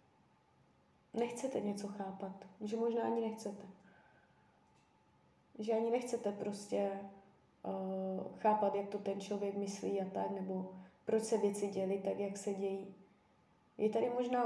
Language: Czech